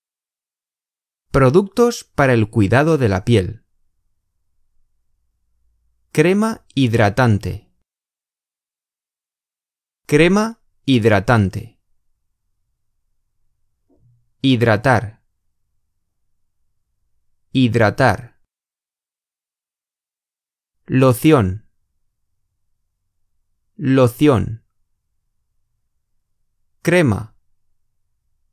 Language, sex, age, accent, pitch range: Chinese, male, 30-49, Spanish, 90-125 Hz